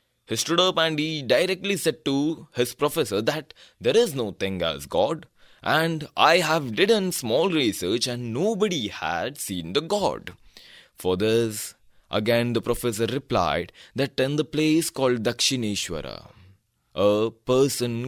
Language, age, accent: Kannada, 20-39, native